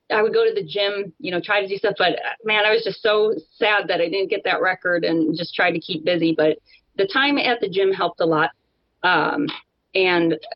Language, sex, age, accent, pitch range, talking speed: English, female, 30-49, American, 175-275 Hz, 240 wpm